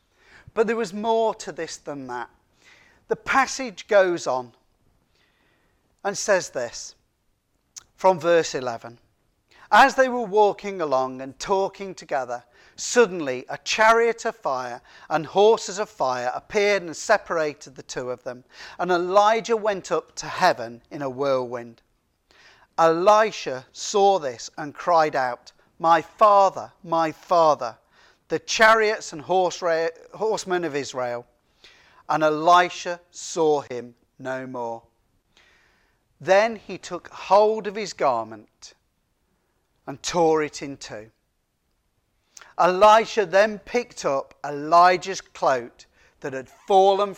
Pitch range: 130-200 Hz